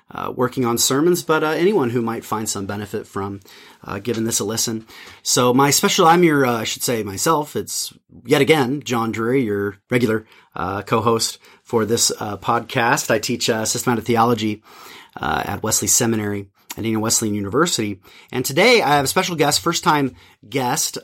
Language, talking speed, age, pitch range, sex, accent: English, 185 wpm, 30-49, 110-140 Hz, male, American